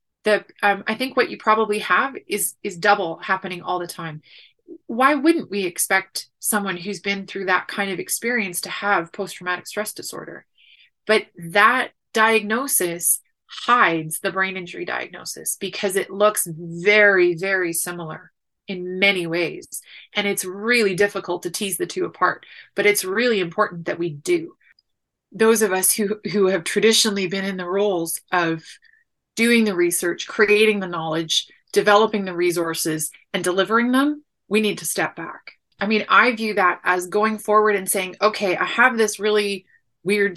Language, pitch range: English, 180-215 Hz